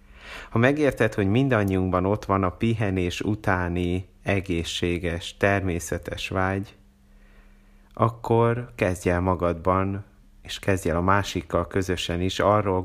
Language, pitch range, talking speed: Hungarian, 85-105 Hz, 110 wpm